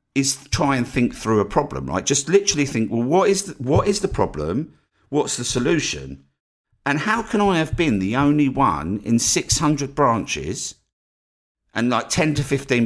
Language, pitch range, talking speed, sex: English, 105-145 Hz, 180 wpm, male